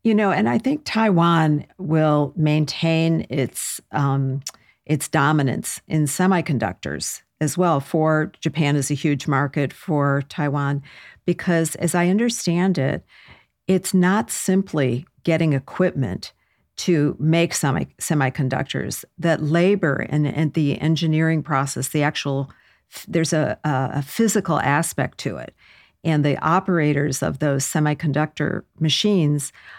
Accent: American